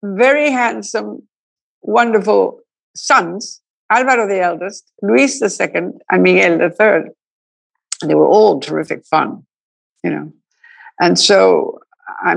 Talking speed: 115 wpm